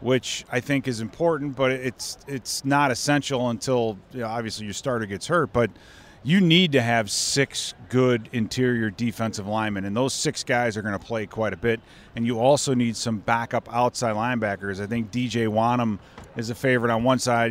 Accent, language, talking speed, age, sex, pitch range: American, English, 195 wpm, 30-49, male, 110-135 Hz